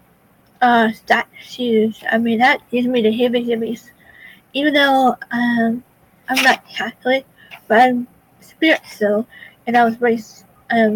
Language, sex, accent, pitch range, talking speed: English, female, American, 220-250 Hz, 130 wpm